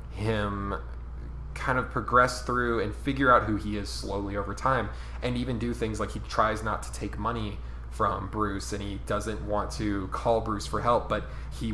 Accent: American